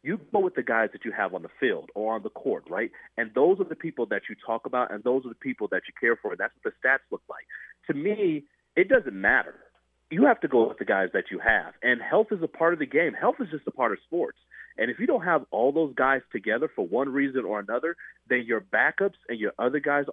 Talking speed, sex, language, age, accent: 270 wpm, male, English, 40-59, American